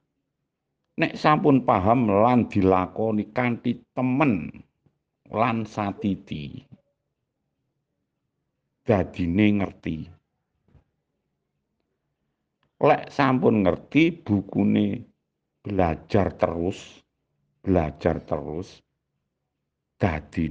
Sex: male